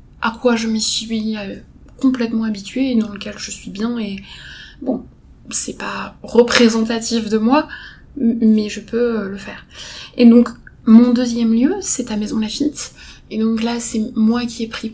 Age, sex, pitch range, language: 20-39, female, 205-235 Hz, French